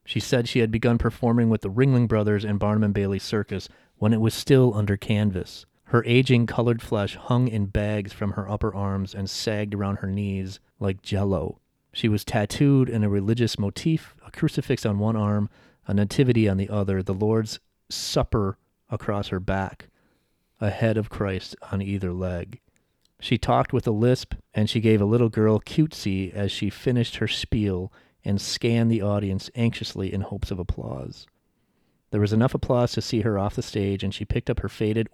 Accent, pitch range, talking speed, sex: American, 100-115 Hz, 190 wpm, male